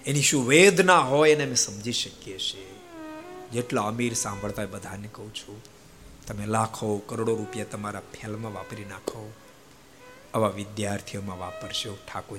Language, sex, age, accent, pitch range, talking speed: Gujarati, male, 50-69, native, 105-130 Hz, 70 wpm